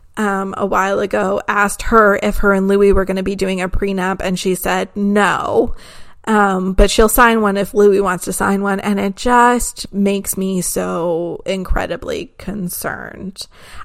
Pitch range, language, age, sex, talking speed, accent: 200-225 Hz, English, 30-49, female, 175 wpm, American